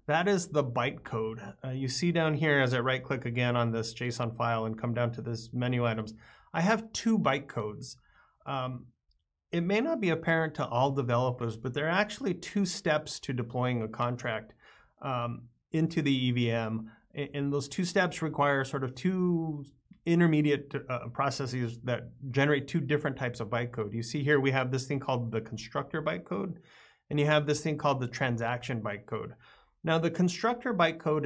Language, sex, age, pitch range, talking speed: English, male, 30-49, 120-150 Hz, 180 wpm